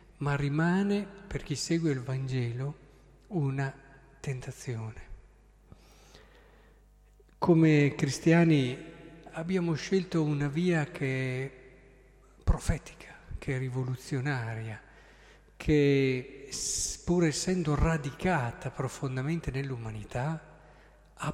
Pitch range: 130-155 Hz